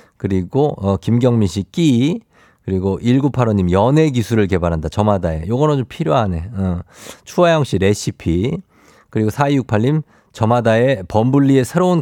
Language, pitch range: Korean, 95-140 Hz